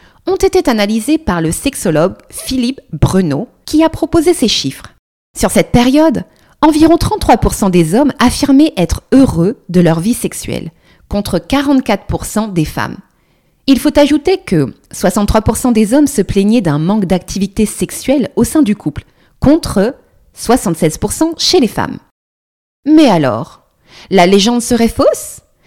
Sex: female